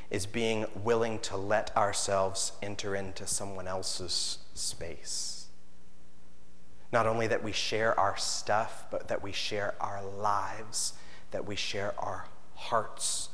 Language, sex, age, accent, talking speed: English, male, 30-49, American, 130 wpm